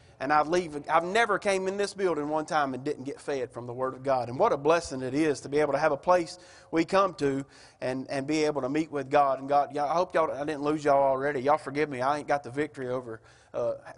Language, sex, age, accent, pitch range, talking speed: English, male, 30-49, American, 150-205 Hz, 275 wpm